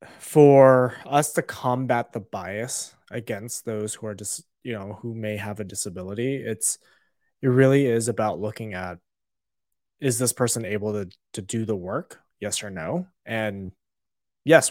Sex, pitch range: male, 110-130 Hz